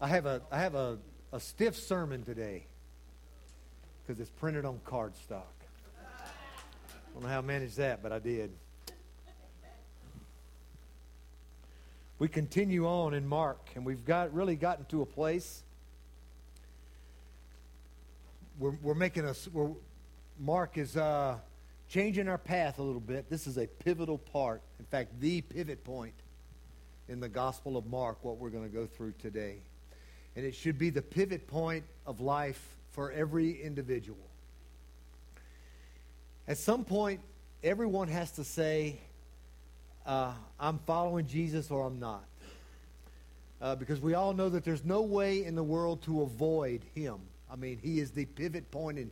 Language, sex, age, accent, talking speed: English, male, 60-79, American, 150 wpm